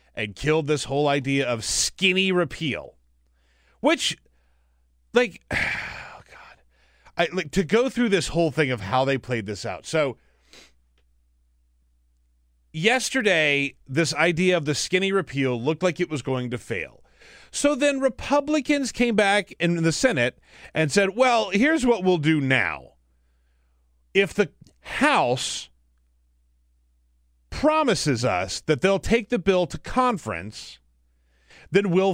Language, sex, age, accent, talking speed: English, male, 30-49, American, 135 wpm